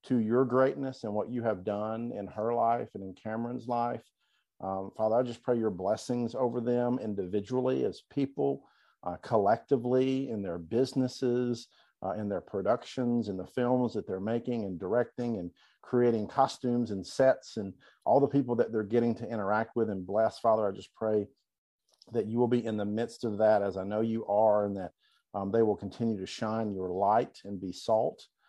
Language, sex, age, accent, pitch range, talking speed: English, male, 50-69, American, 100-125 Hz, 195 wpm